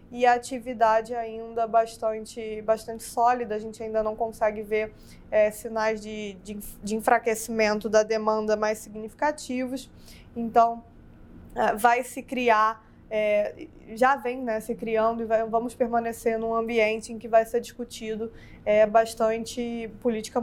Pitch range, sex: 220-240 Hz, female